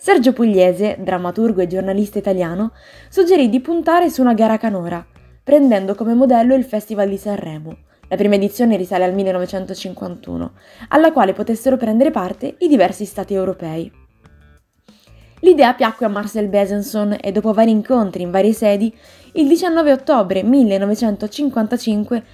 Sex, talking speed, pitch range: female, 135 wpm, 185-255 Hz